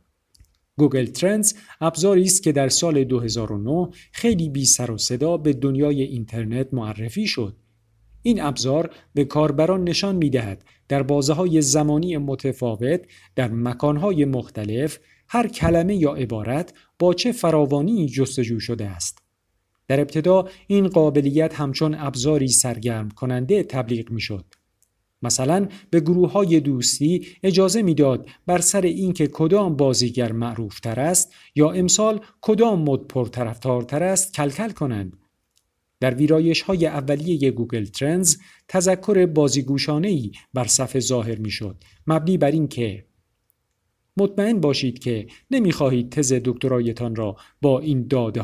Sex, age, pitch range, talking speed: male, 50-69, 115-170 Hz, 125 wpm